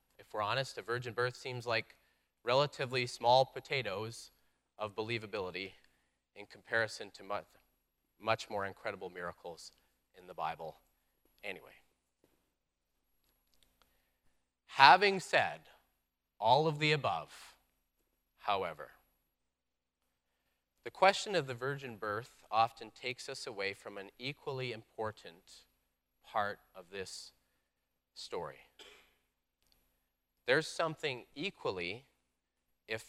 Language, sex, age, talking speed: English, male, 30-49, 100 wpm